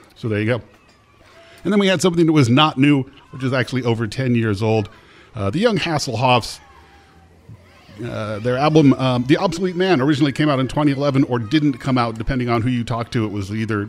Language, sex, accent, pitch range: English, male, American, 105-145 Hz